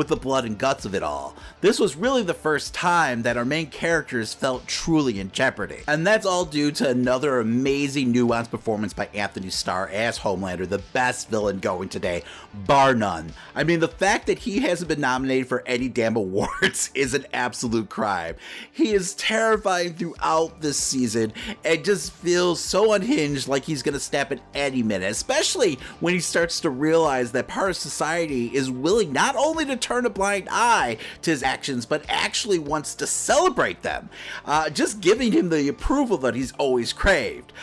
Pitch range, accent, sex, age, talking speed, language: 125-170 Hz, American, male, 30-49, 185 wpm, English